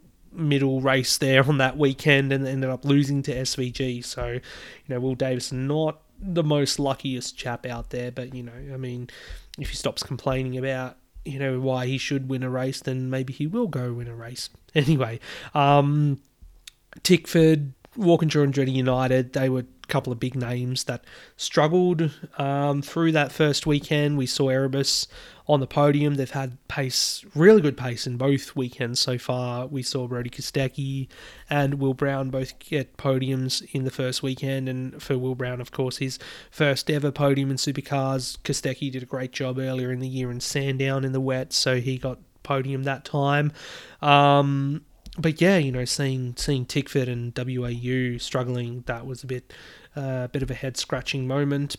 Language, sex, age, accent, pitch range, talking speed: English, male, 20-39, Australian, 130-145 Hz, 180 wpm